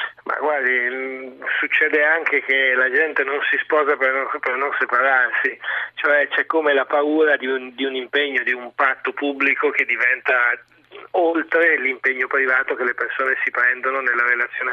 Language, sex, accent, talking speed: Italian, male, native, 165 wpm